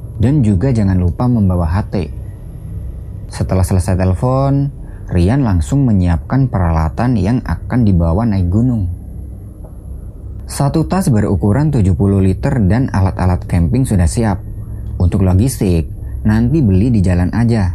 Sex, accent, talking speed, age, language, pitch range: male, native, 120 wpm, 20-39, Indonesian, 85-115 Hz